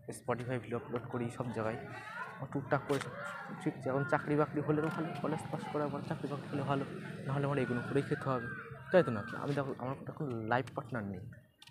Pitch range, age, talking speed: 120-145 Hz, 20-39, 185 wpm